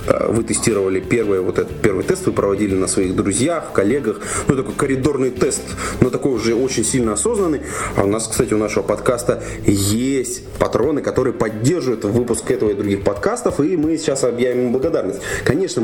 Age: 30-49